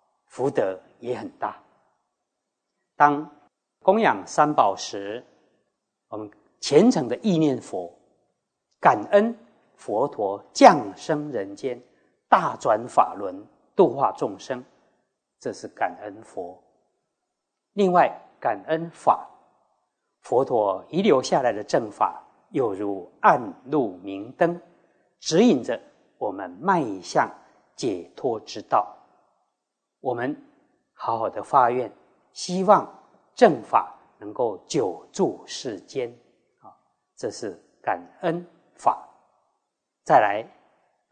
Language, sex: Chinese, male